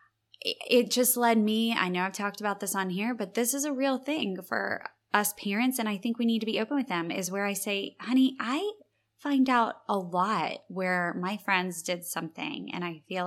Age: 20-39